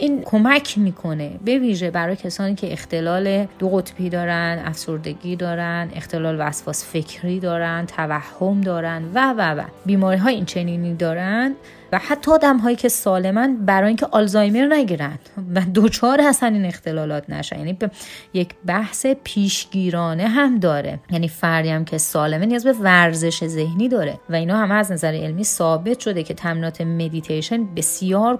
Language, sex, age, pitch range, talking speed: Persian, female, 30-49, 170-215 Hz, 150 wpm